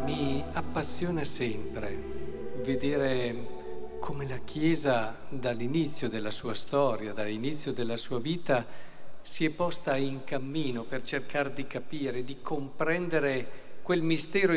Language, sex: Italian, male